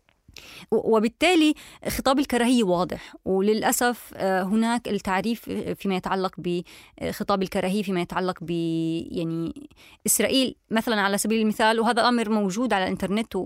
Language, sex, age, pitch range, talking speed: Arabic, female, 20-39, 190-240 Hz, 105 wpm